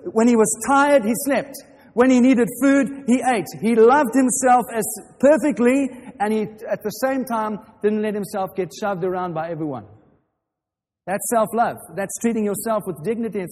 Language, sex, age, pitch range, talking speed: English, male, 40-59, 150-230 Hz, 175 wpm